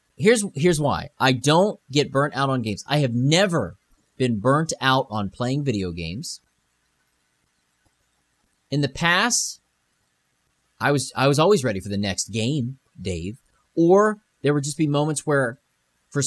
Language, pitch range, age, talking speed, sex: English, 100-150 Hz, 30-49, 155 wpm, male